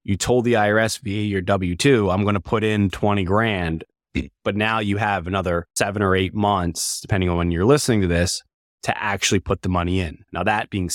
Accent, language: American, English